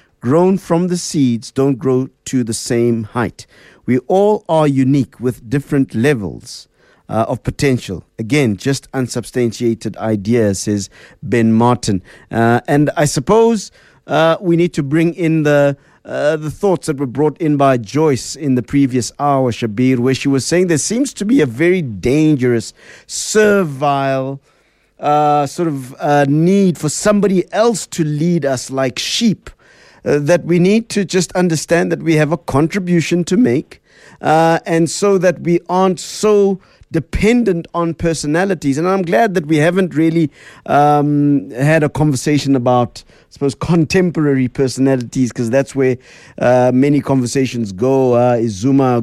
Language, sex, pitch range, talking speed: English, male, 125-170 Hz, 155 wpm